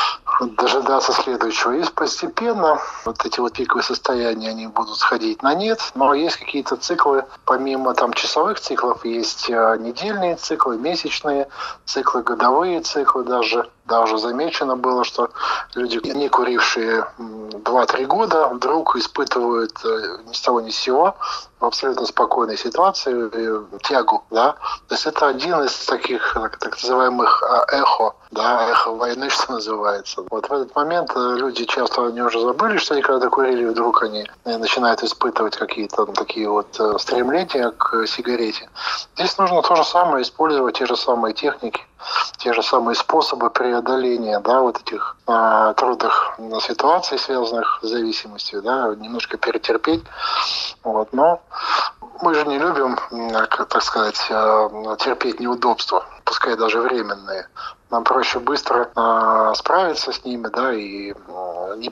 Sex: male